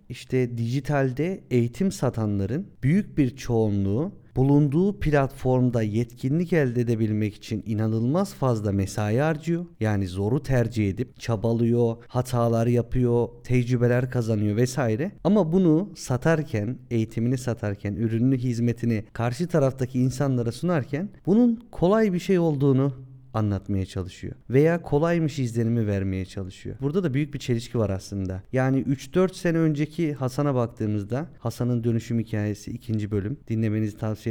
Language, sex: Turkish, male